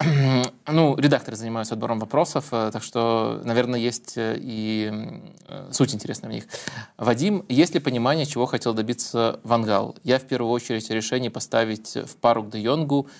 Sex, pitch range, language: male, 110-125 Hz, Russian